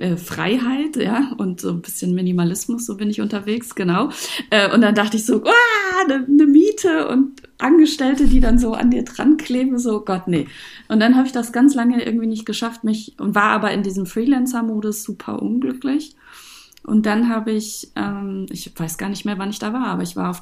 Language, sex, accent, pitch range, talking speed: German, female, German, 185-235 Hz, 200 wpm